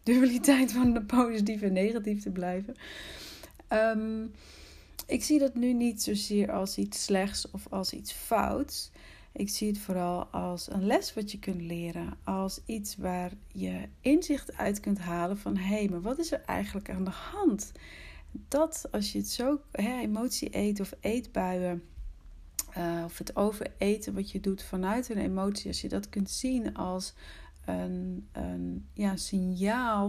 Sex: female